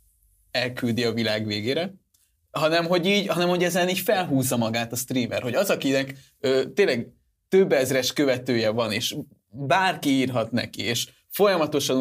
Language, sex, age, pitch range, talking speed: Hungarian, male, 20-39, 125-160 Hz, 150 wpm